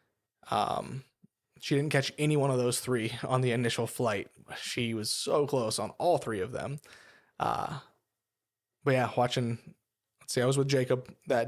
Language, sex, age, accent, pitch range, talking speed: English, male, 20-39, American, 125-140 Hz, 170 wpm